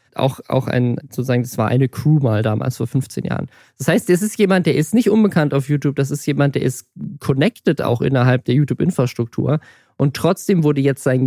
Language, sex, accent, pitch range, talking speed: German, male, German, 130-160 Hz, 210 wpm